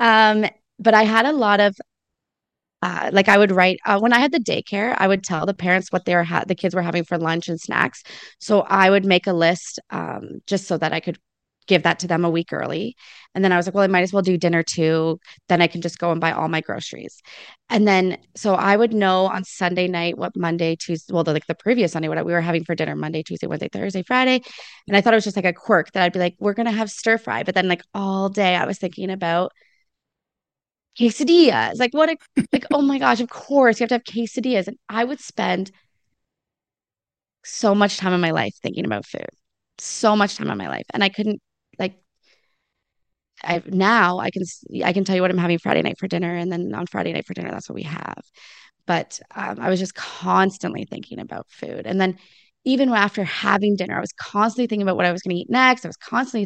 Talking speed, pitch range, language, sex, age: 240 wpm, 175-220 Hz, English, female, 20-39